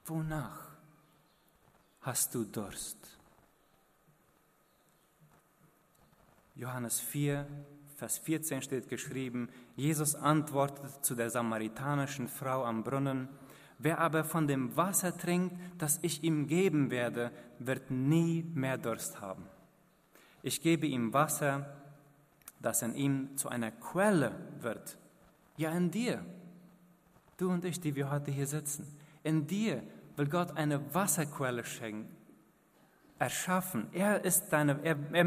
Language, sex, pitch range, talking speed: German, male, 125-160 Hz, 110 wpm